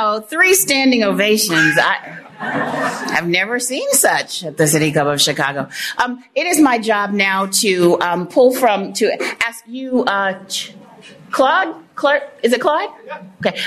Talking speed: 140 wpm